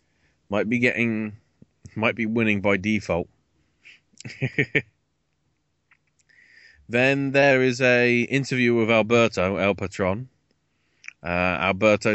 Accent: British